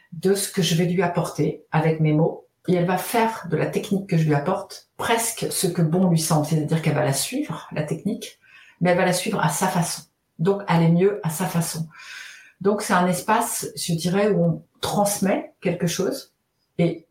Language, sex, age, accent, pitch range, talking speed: French, female, 50-69, French, 155-190 Hz, 215 wpm